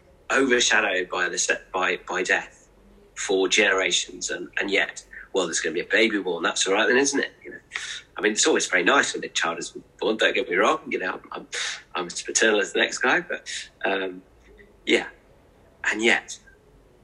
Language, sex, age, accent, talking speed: English, male, 30-49, British, 200 wpm